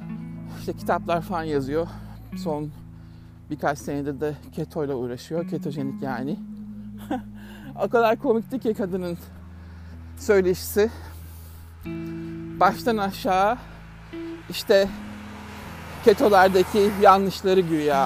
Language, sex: Turkish, male